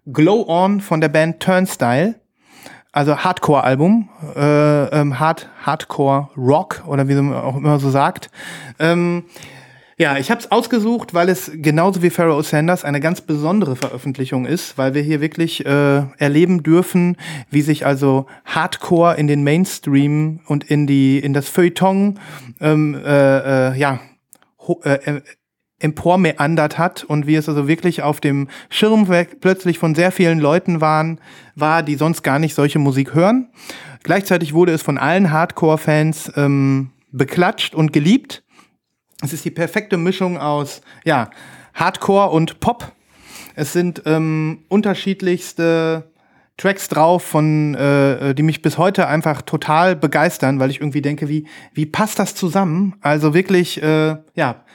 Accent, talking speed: German, 150 wpm